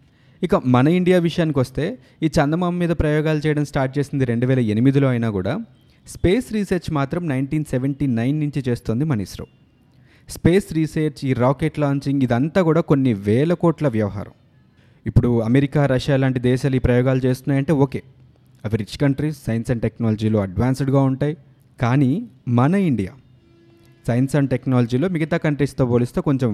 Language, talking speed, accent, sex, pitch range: Telugu, 145 wpm, native, male, 125-155 Hz